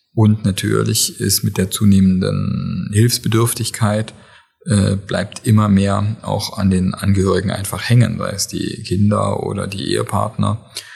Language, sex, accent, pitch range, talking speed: German, male, German, 95-115 Hz, 130 wpm